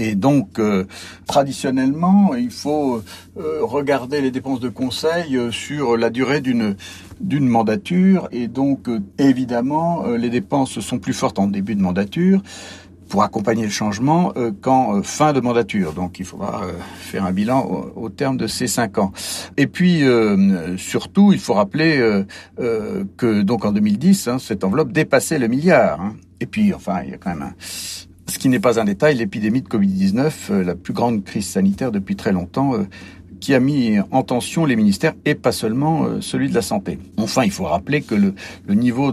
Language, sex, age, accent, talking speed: French, male, 60-79, French, 190 wpm